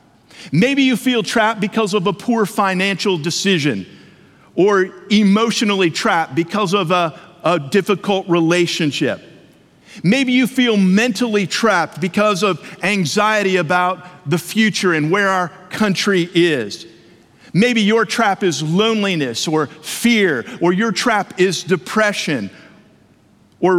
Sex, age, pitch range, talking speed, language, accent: male, 50-69, 170-215 Hz, 120 wpm, English, American